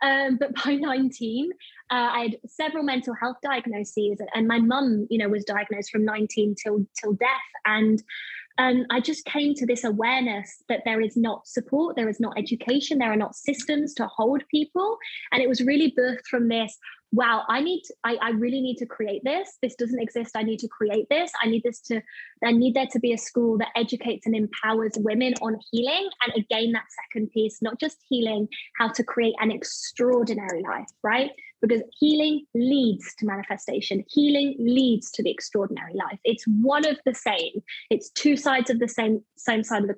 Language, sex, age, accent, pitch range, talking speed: English, female, 20-39, British, 225-275 Hz, 200 wpm